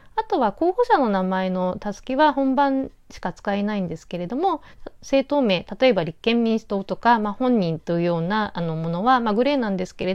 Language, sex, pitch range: Japanese, female, 185-280 Hz